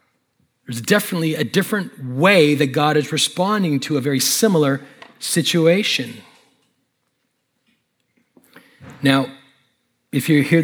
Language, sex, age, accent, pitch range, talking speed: English, male, 40-59, American, 130-160 Hz, 100 wpm